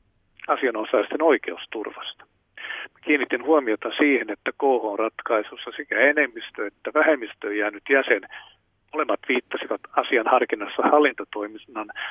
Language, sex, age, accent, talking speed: Finnish, male, 50-69, native, 100 wpm